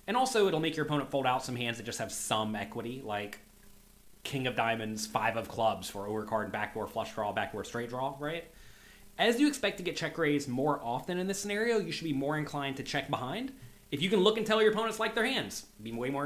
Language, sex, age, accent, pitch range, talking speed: English, male, 30-49, American, 115-160 Hz, 245 wpm